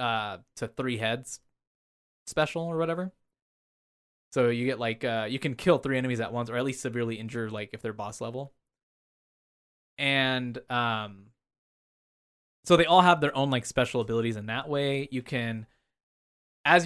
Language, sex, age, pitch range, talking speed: English, male, 20-39, 115-140 Hz, 165 wpm